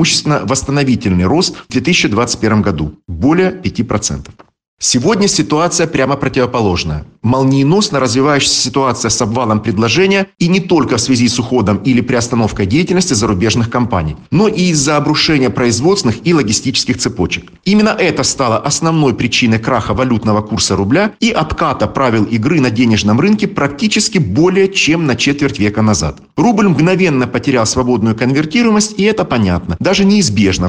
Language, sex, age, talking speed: Russian, male, 40-59, 140 wpm